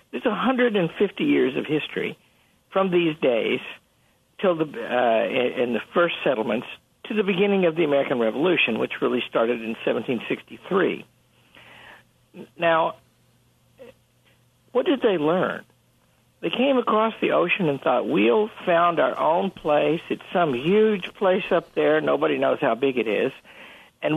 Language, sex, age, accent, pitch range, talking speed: English, male, 60-79, American, 150-220 Hz, 135 wpm